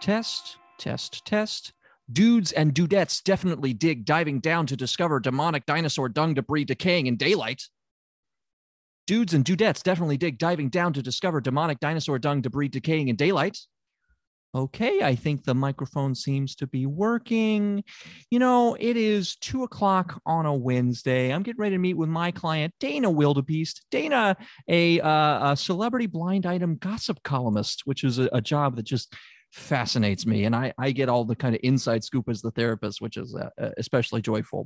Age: 30-49